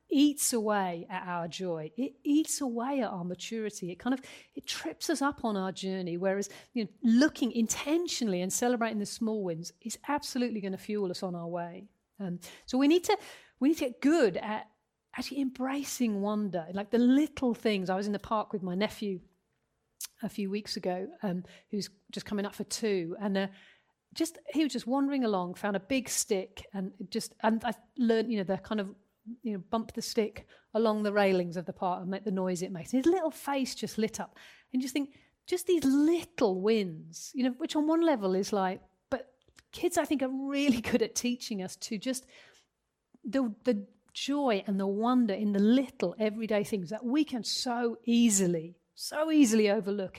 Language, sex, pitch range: English, female, 195-260 Hz